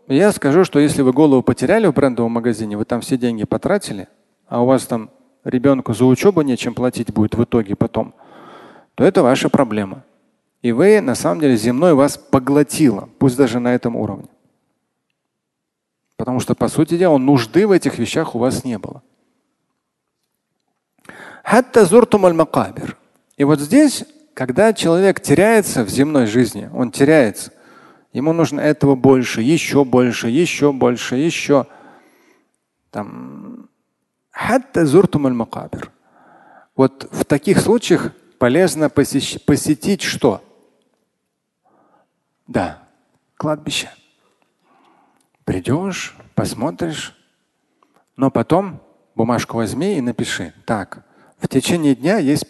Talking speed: 115 wpm